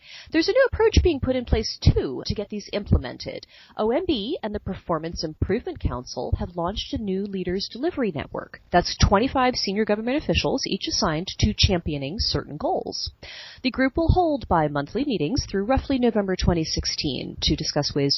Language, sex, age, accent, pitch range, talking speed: English, female, 30-49, American, 155-255 Hz, 170 wpm